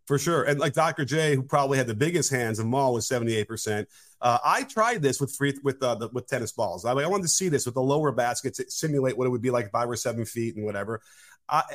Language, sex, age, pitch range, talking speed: English, male, 30-49, 125-155 Hz, 265 wpm